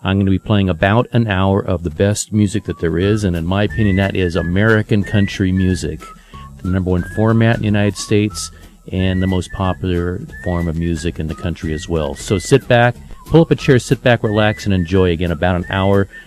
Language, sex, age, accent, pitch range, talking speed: English, male, 40-59, American, 90-110 Hz, 220 wpm